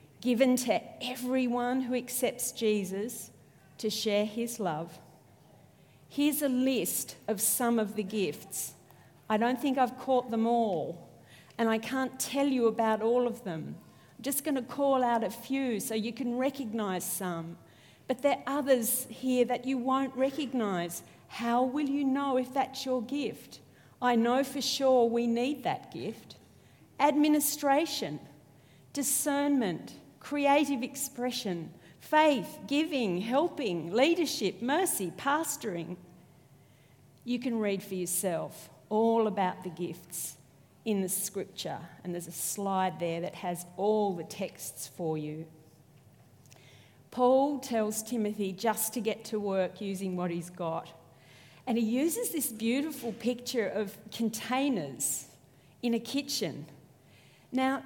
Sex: female